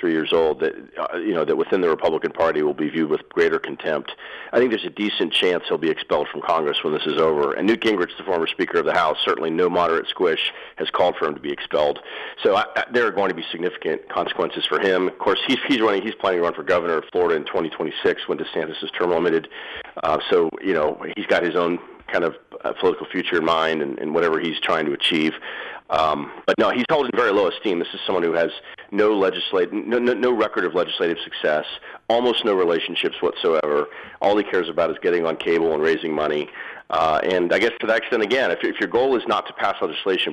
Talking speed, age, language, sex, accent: 240 wpm, 40-59, English, male, American